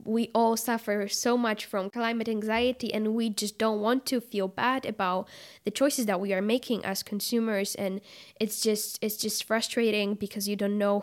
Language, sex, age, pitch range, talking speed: English, female, 10-29, 195-220 Hz, 190 wpm